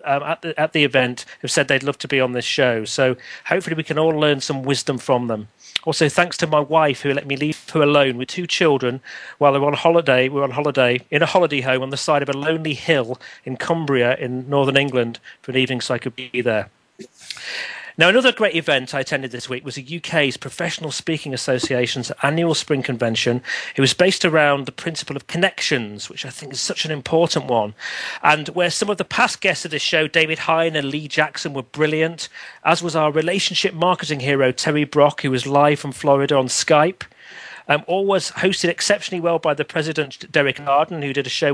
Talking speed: 220 wpm